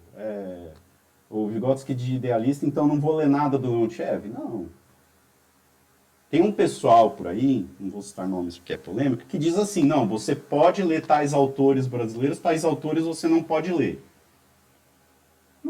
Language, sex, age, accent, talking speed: Portuguese, male, 50-69, Brazilian, 155 wpm